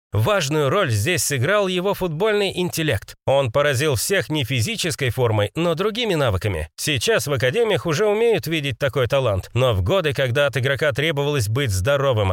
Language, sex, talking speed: Russian, male, 160 wpm